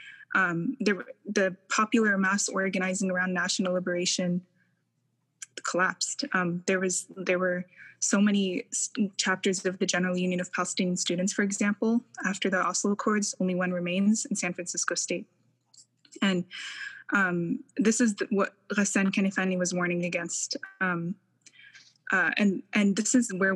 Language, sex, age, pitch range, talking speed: English, female, 20-39, 180-210 Hz, 145 wpm